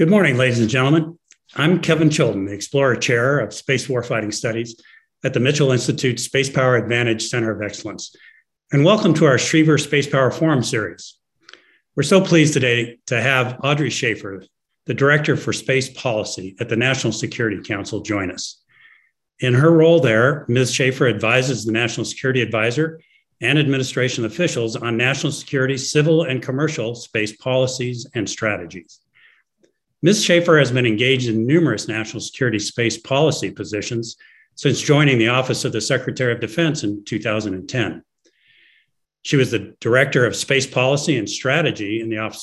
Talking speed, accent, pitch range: 160 wpm, American, 115-150 Hz